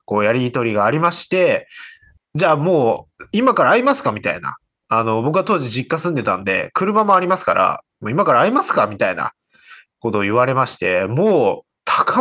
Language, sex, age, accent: Japanese, male, 20-39, native